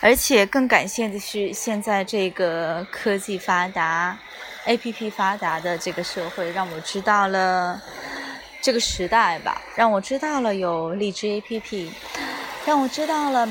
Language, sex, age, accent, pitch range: Chinese, female, 20-39, native, 180-230 Hz